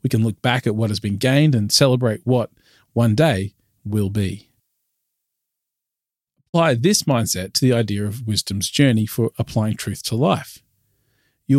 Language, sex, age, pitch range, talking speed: English, male, 40-59, 105-135 Hz, 160 wpm